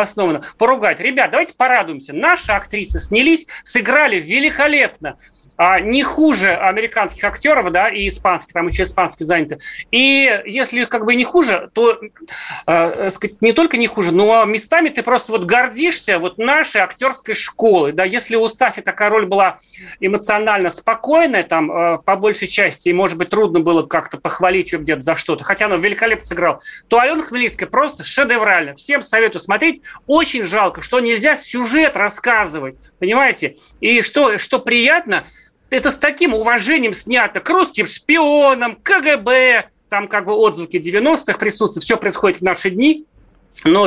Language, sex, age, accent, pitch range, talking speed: Russian, male, 30-49, native, 190-260 Hz, 155 wpm